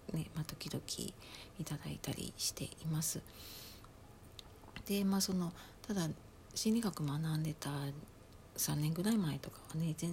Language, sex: Japanese, female